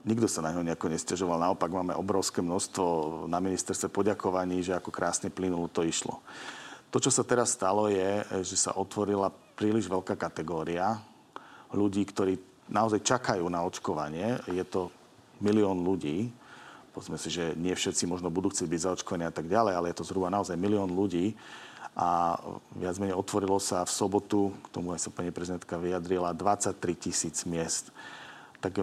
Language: Slovak